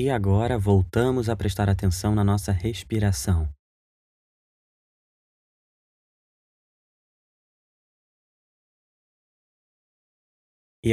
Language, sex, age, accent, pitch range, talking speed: Portuguese, male, 20-39, Brazilian, 90-110 Hz, 55 wpm